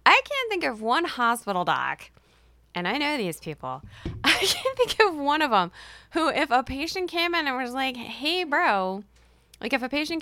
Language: English